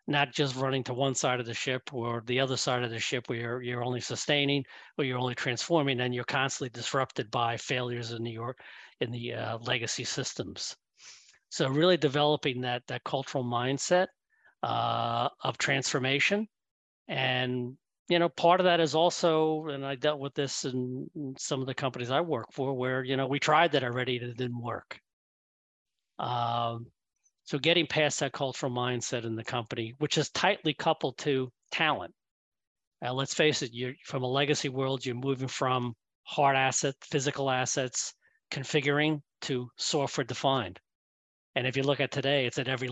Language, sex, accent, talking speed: English, male, American, 180 wpm